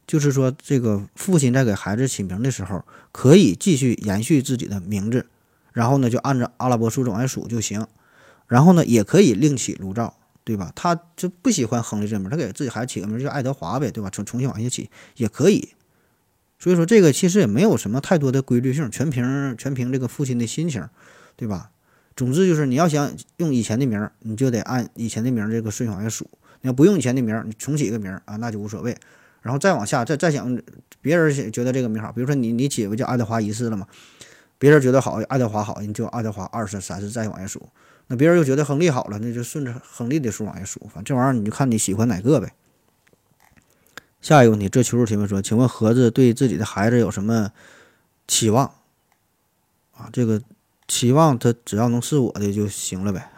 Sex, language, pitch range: male, Chinese, 110-135 Hz